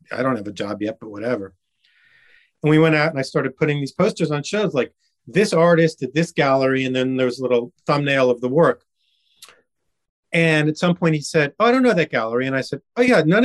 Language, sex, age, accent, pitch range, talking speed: English, male, 40-59, American, 125-170 Hz, 235 wpm